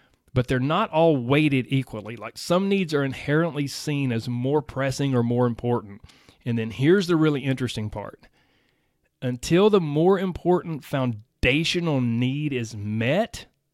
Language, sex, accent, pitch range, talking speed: English, male, American, 125-155 Hz, 145 wpm